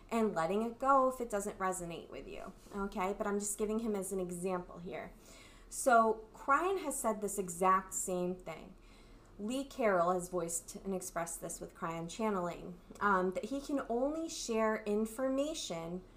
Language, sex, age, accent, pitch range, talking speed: English, female, 20-39, American, 180-230 Hz, 165 wpm